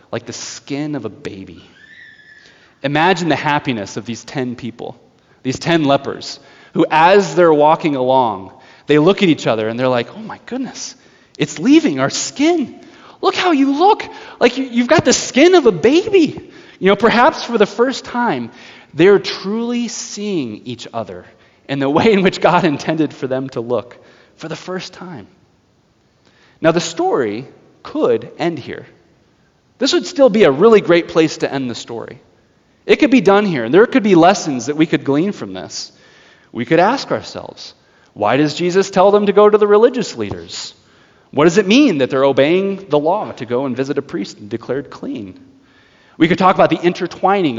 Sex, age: male, 30-49